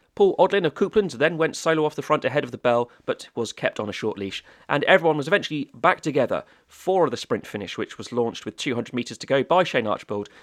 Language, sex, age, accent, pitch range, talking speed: English, male, 30-49, British, 120-165 Hz, 240 wpm